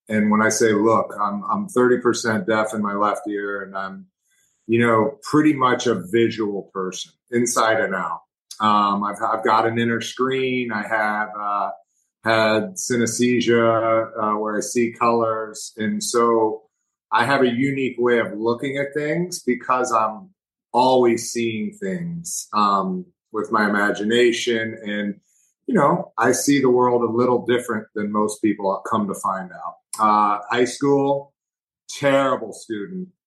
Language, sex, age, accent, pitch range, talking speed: English, male, 40-59, American, 110-125 Hz, 155 wpm